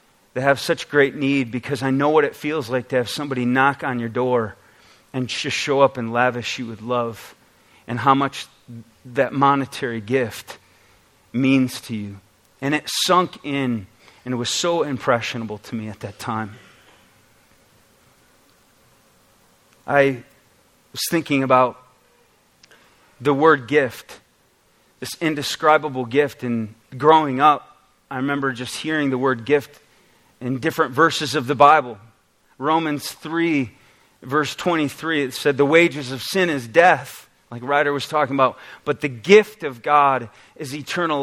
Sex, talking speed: male, 145 wpm